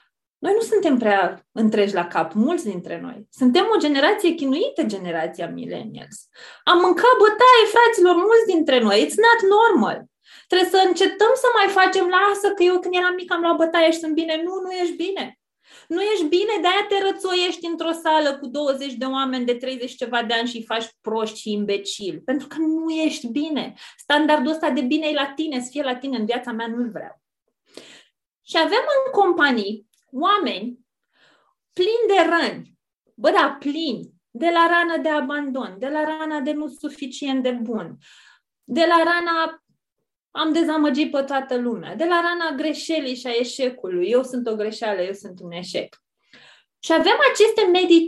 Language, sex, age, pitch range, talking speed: Romanian, female, 20-39, 245-355 Hz, 180 wpm